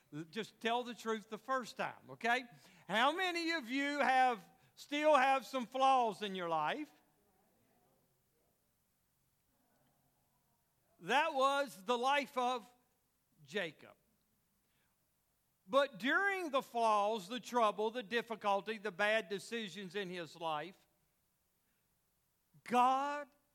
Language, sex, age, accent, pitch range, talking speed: English, male, 50-69, American, 170-250 Hz, 105 wpm